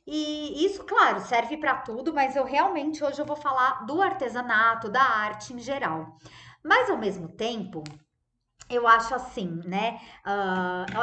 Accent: Brazilian